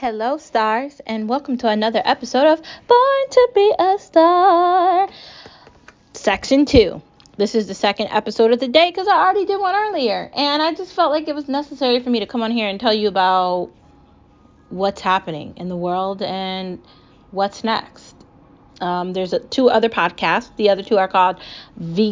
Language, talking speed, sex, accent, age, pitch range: English, 180 wpm, female, American, 20-39, 190-245 Hz